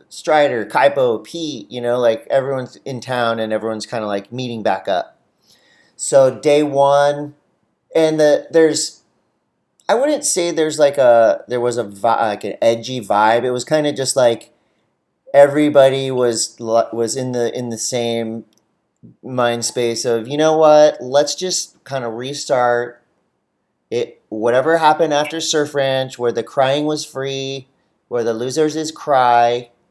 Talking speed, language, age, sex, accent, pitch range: 155 wpm, English, 40-59, male, American, 120-150 Hz